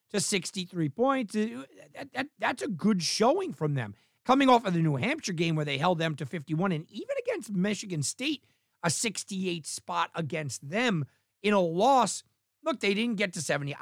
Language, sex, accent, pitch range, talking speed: English, male, American, 155-215 Hz, 180 wpm